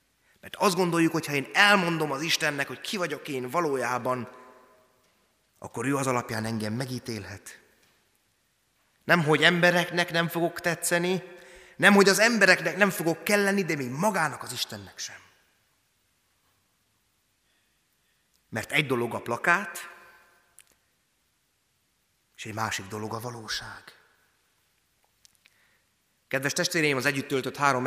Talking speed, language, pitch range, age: 125 wpm, Hungarian, 120-155 Hz, 30-49